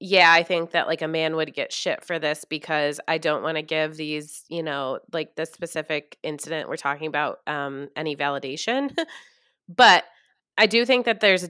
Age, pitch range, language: 20-39, 160-230 Hz, English